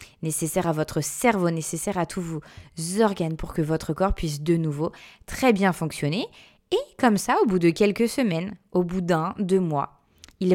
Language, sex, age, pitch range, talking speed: French, female, 20-39, 180-230 Hz, 190 wpm